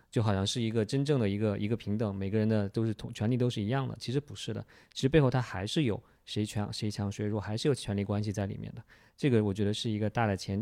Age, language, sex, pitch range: 20-39, Chinese, male, 105-130 Hz